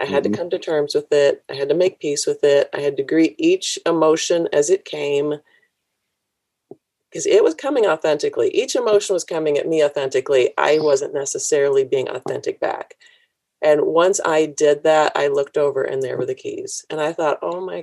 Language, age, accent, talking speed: English, 40-59, American, 200 wpm